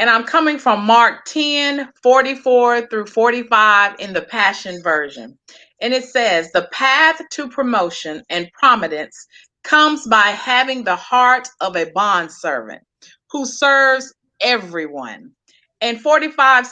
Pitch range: 200-270 Hz